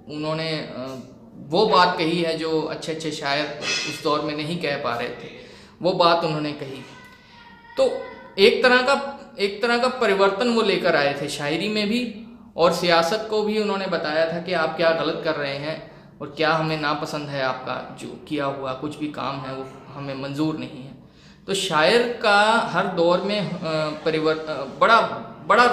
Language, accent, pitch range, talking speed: Hindi, native, 145-185 Hz, 180 wpm